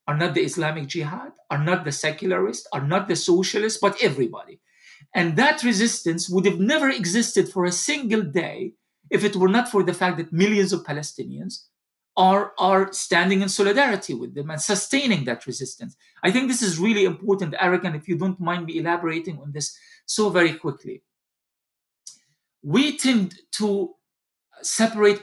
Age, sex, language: 50-69, male, English